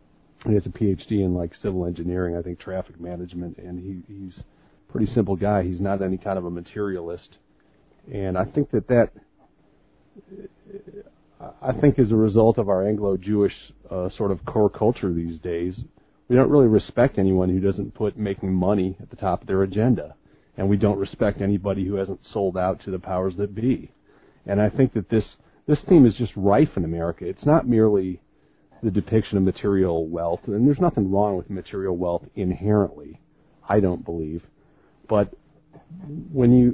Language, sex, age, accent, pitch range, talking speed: English, male, 40-59, American, 95-115 Hz, 180 wpm